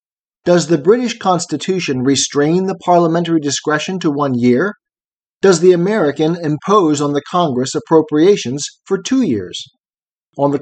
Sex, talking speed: male, 135 wpm